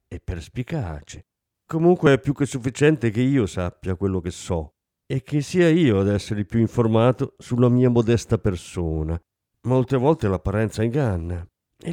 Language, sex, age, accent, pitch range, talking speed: Italian, male, 50-69, native, 95-140 Hz, 150 wpm